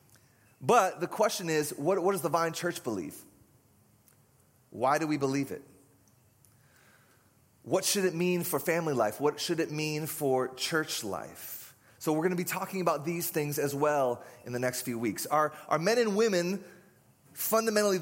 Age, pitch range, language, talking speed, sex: 30-49, 130-170 Hz, English, 175 wpm, male